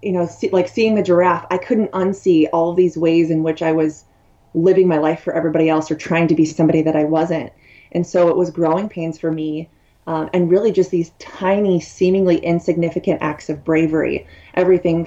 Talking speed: 200 wpm